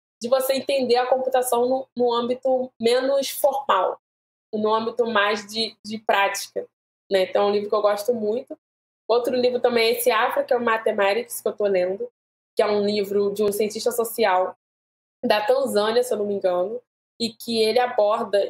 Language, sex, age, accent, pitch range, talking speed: Portuguese, female, 20-39, Brazilian, 205-245 Hz, 190 wpm